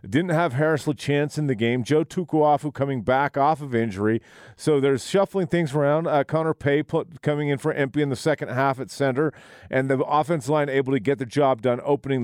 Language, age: English, 40-59